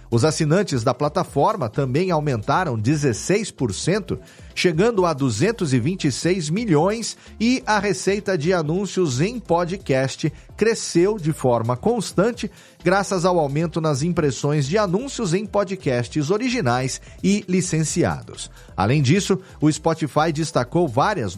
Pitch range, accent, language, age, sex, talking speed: 140-200 Hz, Brazilian, Portuguese, 40-59, male, 110 wpm